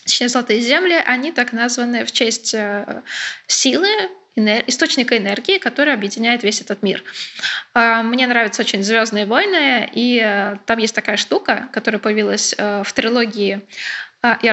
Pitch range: 215-265 Hz